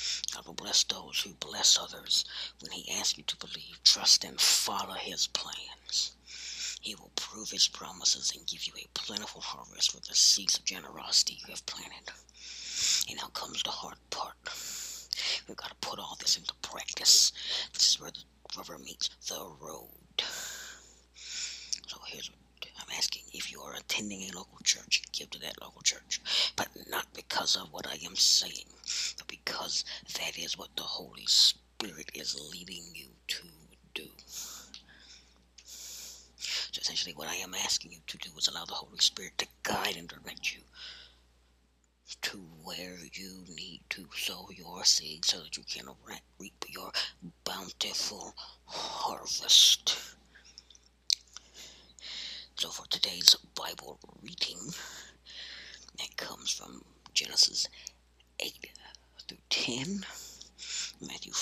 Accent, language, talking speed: American, English, 140 wpm